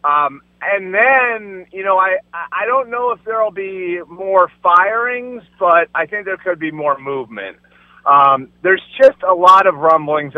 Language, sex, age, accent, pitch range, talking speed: English, male, 30-49, American, 145-185 Hz, 170 wpm